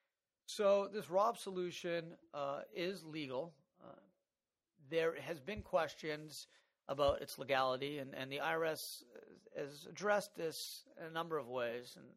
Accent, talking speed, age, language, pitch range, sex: American, 140 wpm, 40-59, English, 135-185 Hz, male